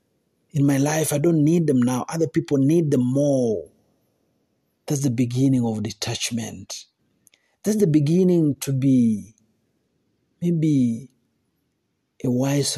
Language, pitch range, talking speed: Swahili, 120-155 Hz, 120 wpm